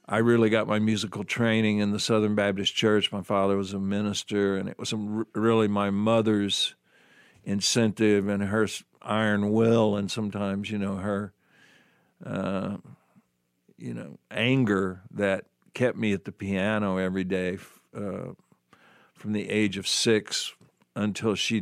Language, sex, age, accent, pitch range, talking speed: English, male, 60-79, American, 100-110 Hz, 145 wpm